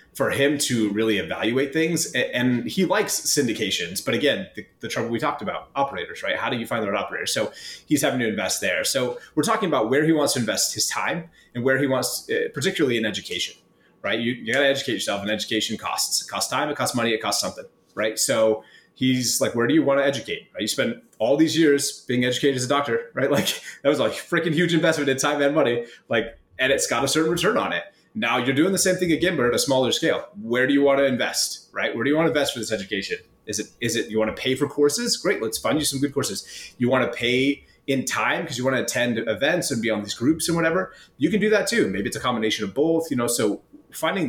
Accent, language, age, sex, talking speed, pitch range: American, English, 30-49, male, 260 wpm, 115-155 Hz